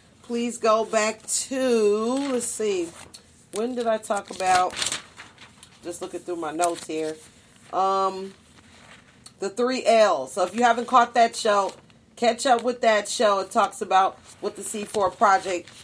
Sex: female